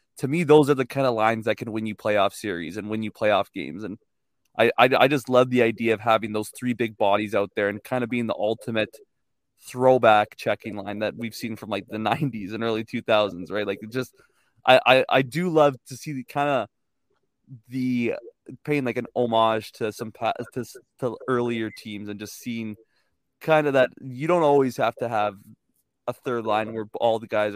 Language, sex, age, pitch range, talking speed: English, male, 20-39, 110-130 Hz, 220 wpm